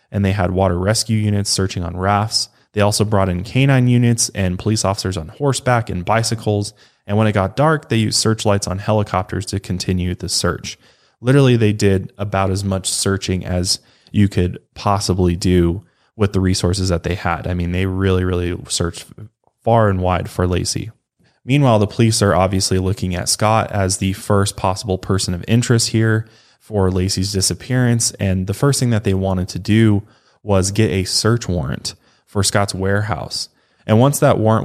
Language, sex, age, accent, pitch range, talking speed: English, male, 20-39, American, 95-115 Hz, 180 wpm